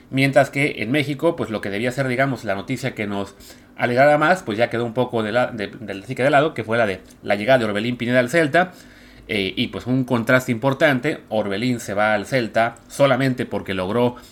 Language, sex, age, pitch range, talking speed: Spanish, male, 30-49, 110-150 Hz, 220 wpm